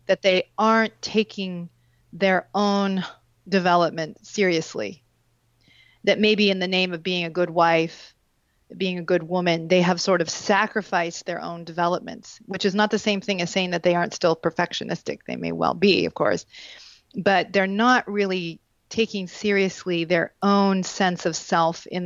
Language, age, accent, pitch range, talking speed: English, 40-59, American, 170-200 Hz, 165 wpm